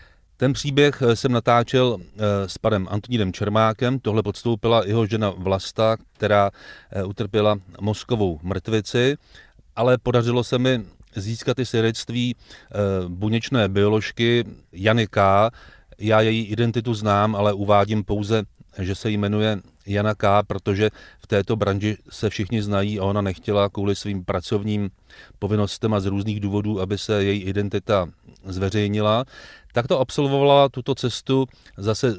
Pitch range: 100-115 Hz